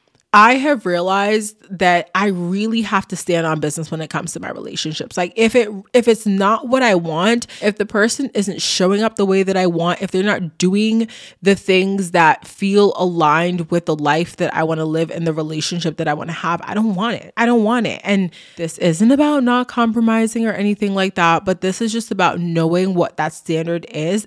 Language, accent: English, American